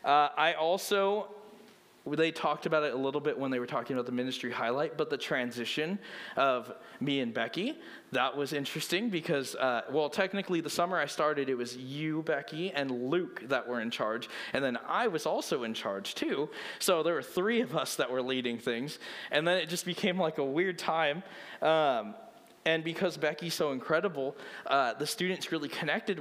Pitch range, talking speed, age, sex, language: 130-190 Hz, 190 wpm, 20-39, male, English